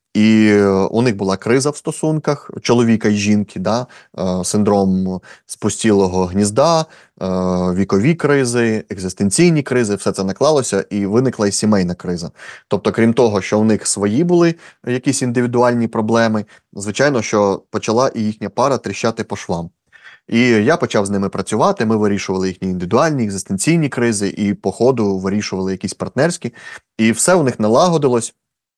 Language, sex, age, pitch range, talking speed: Ukrainian, male, 20-39, 100-125 Hz, 150 wpm